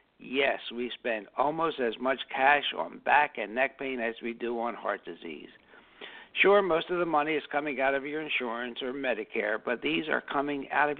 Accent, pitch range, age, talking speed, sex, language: American, 130-155 Hz, 60-79, 200 wpm, male, English